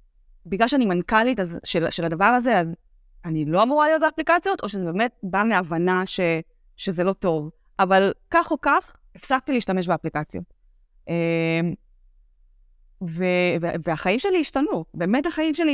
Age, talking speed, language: 20-39, 140 wpm, Hebrew